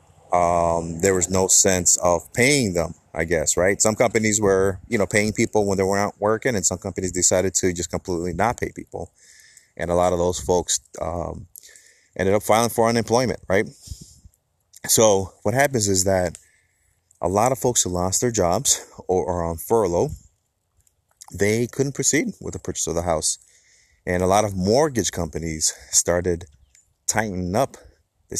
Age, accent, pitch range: 30-49, American, 85-105 Hz